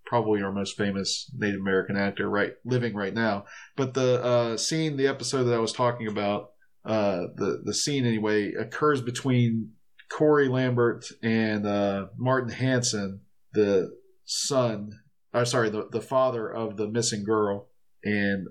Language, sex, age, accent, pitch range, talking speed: English, male, 40-59, American, 105-120 Hz, 155 wpm